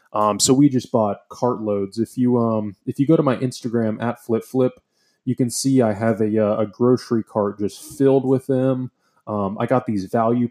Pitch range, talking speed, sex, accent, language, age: 110-130 Hz, 210 wpm, male, American, English, 20-39